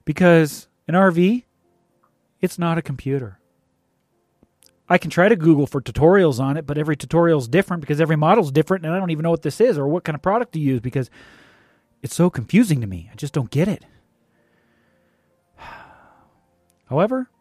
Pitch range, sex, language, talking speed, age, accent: 135-175 Hz, male, English, 185 wpm, 30-49, American